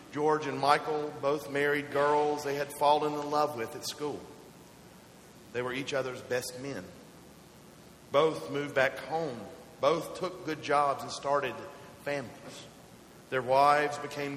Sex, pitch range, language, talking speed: male, 135-165 Hz, English, 140 wpm